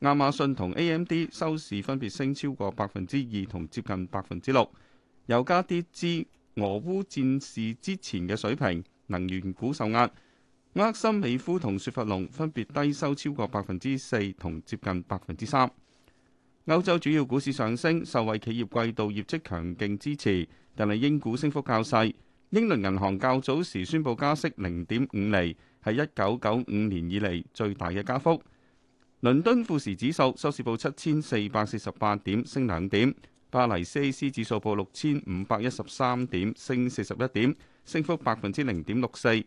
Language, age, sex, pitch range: Chinese, 30-49, male, 100-140 Hz